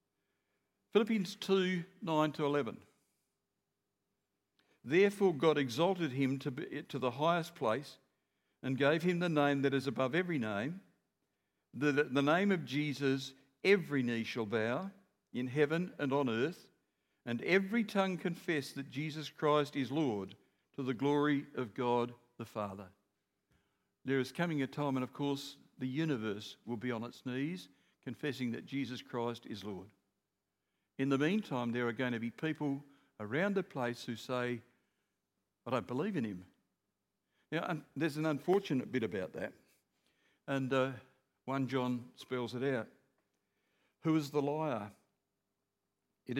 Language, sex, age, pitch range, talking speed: English, male, 60-79, 125-155 Hz, 145 wpm